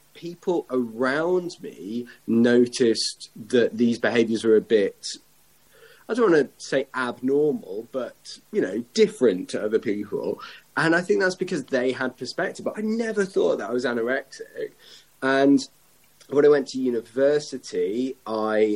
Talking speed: 145 wpm